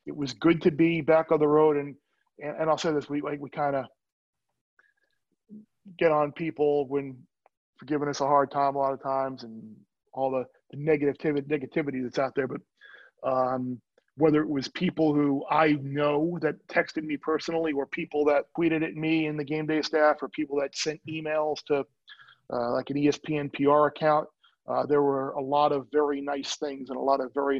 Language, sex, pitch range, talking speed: English, male, 135-155 Hz, 200 wpm